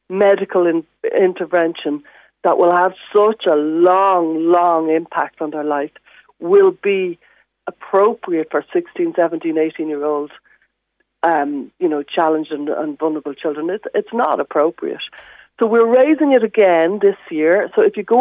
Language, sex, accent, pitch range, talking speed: English, female, Irish, 160-225 Hz, 135 wpm